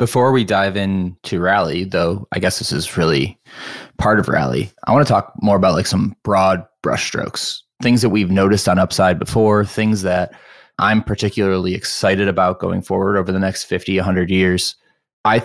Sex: male